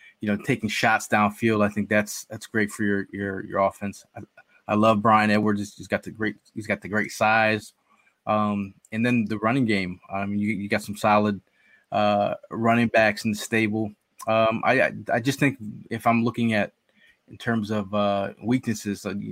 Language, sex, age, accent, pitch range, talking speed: English, male, 20-39, American, 100-115 Hz, 190 wpm